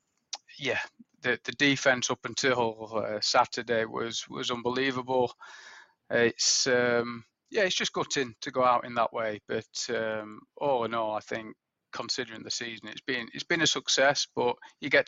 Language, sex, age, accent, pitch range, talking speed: English, male, 30-49, British, 120-130 Hz, 170 wpm